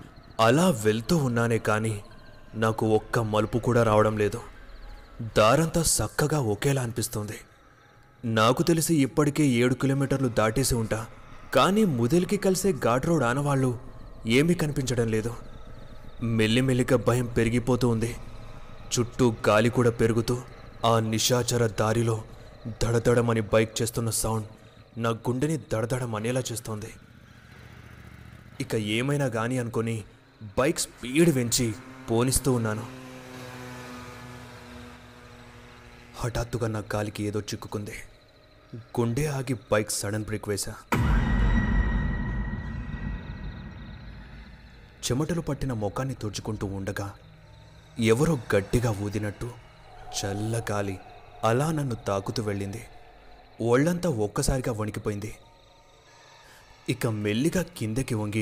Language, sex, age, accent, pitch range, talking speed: Telugu, male, 20-39, native, 110-130 Hz, 90 wpm